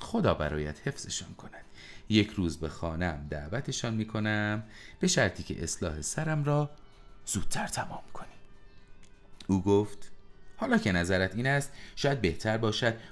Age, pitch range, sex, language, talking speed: 30-49, 80-135 Hz, male, Persian, 135 wpm